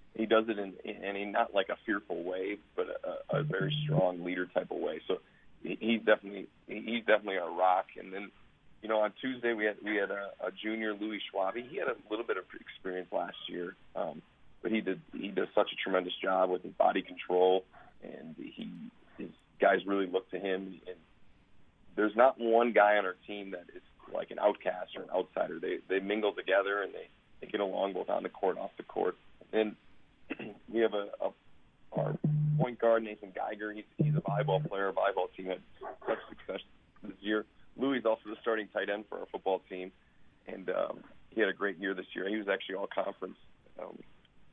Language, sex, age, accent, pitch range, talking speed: English, male, 40-59, American, 95-115 Hz, 210 wpm